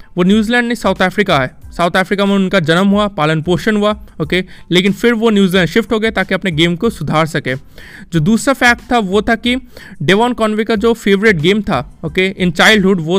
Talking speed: 220 wpm